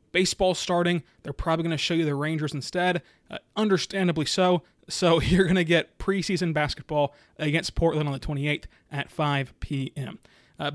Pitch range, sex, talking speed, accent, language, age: 155-185 Hz, male, 165 wpm, American, English, 20-39